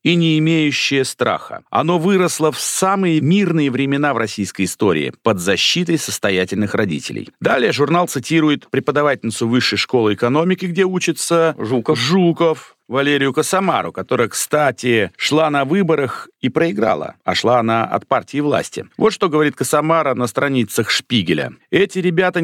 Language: Russian